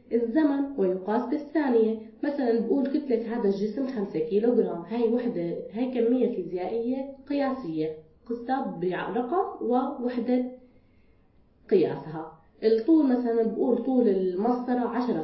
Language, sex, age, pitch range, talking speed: Arabic, female, 20-39, 200-255 Hz, 100 wpm